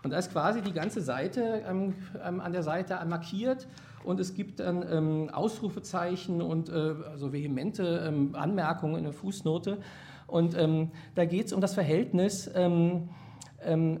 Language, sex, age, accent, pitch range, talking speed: German, male, 50-69, German, 155-190 Hz, 155 wpm